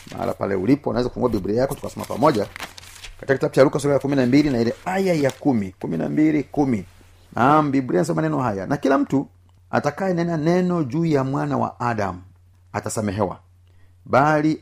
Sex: male